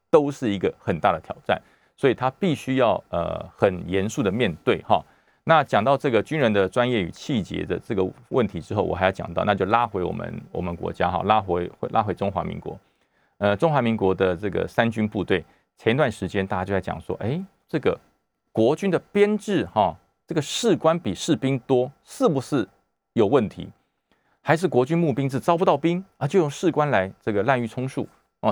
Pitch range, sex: 100-145 Hz, male